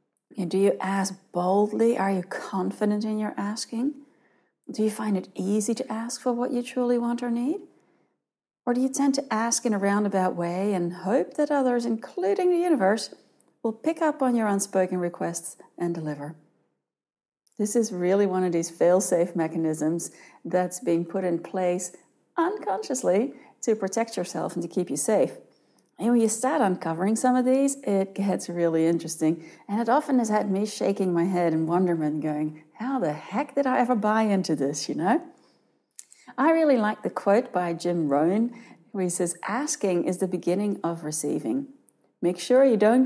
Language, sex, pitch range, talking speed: English, female, 175-245 Hz, 180 wpm